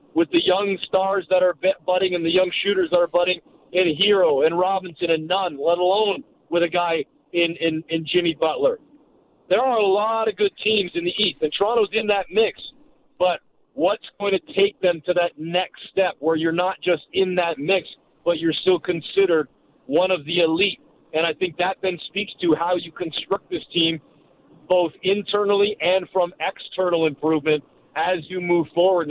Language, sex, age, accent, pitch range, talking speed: English, male, 40-59, American, 165-195 Hz, 190 wpm